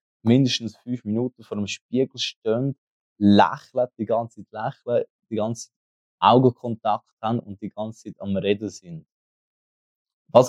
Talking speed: 135 wpm